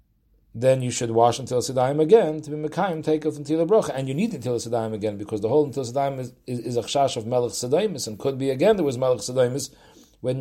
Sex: male